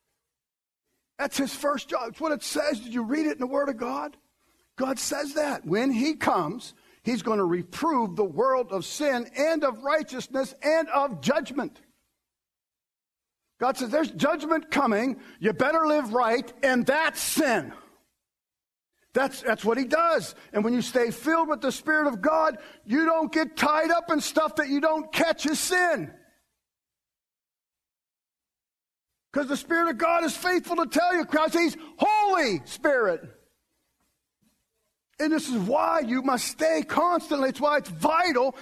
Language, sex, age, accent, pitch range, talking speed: English, male, 50-69, American, 230-320 Hz, 160 wpm